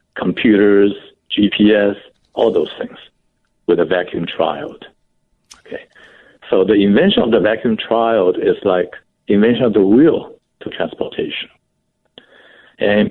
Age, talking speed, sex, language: 60-79, 120 wpm, male, English